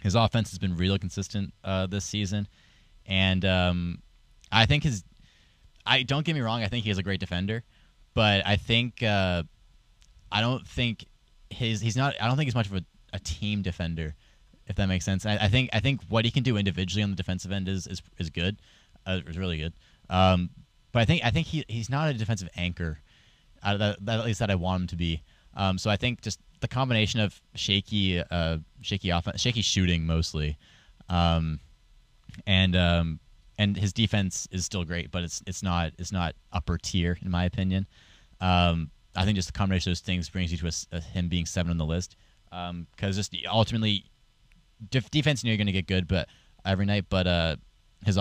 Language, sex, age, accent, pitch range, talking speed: English, male, 20-39, American, 85-105 Hz, 210 wpm